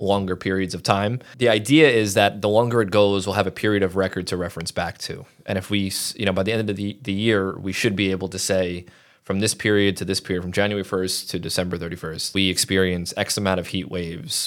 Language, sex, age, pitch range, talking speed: English, male, 20-39, 95-105 Hz, 245 wpm